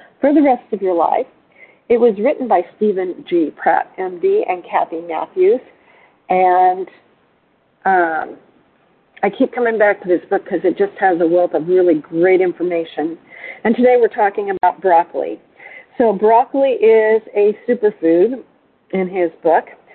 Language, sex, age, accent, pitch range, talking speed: English, female, 50-69, American, 190-280 Hz, 150 wpm